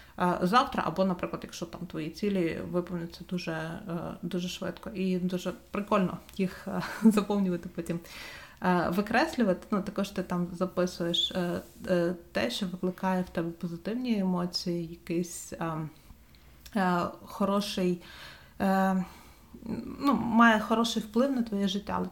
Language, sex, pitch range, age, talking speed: Ukrainian, female, 180-210 Hz, 30-49, 115 wpm